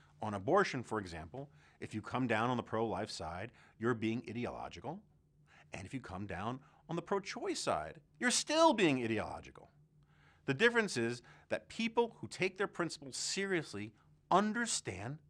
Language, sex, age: English, male, 40-59